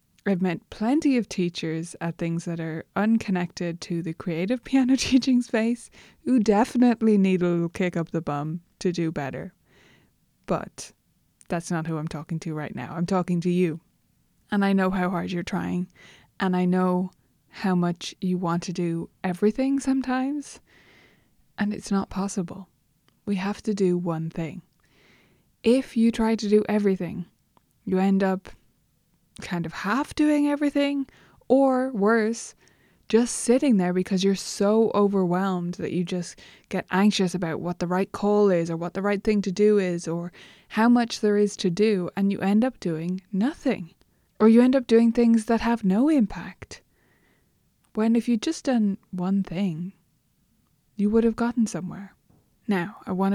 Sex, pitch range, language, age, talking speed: female, 175-225 Hz, English, 20-39, 170 wpm